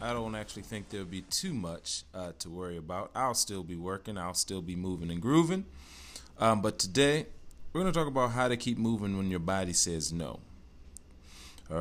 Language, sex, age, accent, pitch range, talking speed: English, male, 30-49, American, 80-105 Hz, 205 wpm